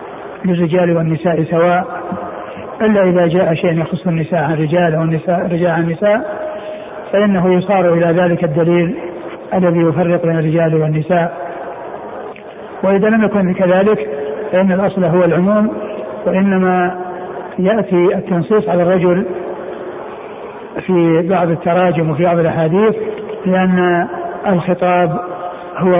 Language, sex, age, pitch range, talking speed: Arabic, male, 60-79, 175-195 Hz, 110 wpm